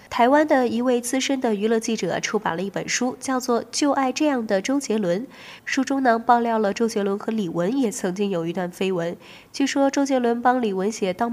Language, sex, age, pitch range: Chinese, female, 20-39, 195-265 Hz